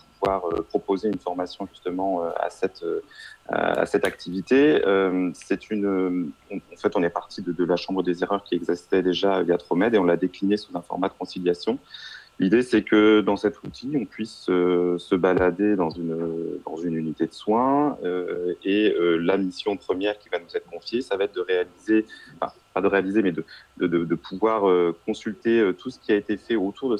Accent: French